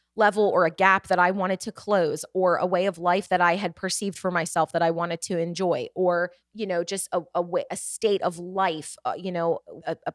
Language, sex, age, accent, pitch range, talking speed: English, female, 30-49, American, 150-205 Hz, 240 wpm